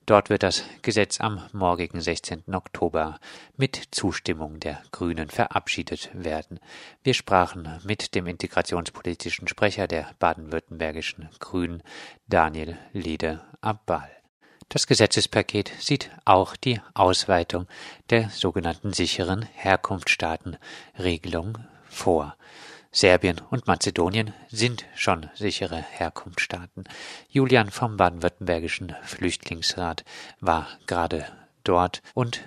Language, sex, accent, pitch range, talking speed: German, male, German, 85-100 Hz, 95 wpm